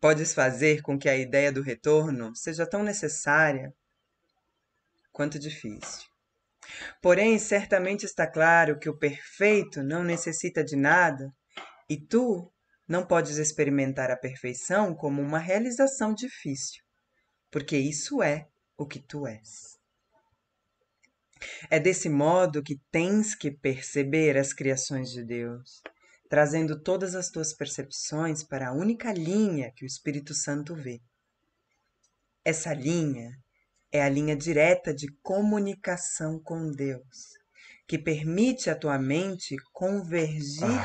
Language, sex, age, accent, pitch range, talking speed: Portuguese, female, 20-39, Brazilian, 140-180 Hz, 120 wpm